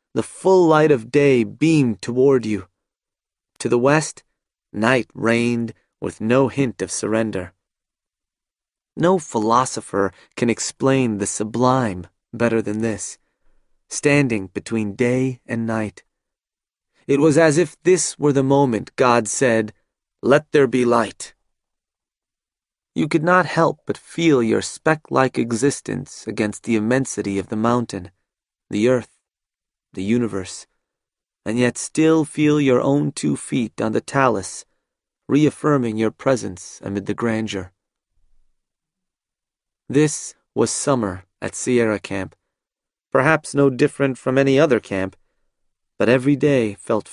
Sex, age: male, 30-49